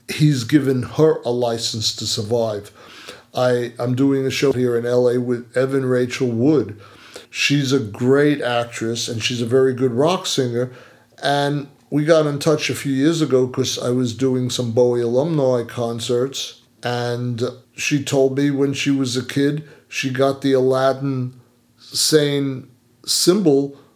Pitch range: 120-140 Hz